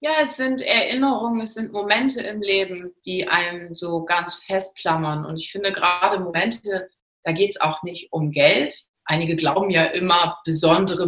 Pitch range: 160-215 Hz